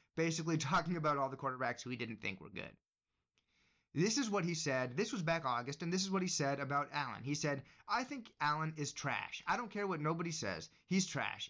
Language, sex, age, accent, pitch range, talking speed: English, male, 30-49, American, 145-215 Hz, 230 wpm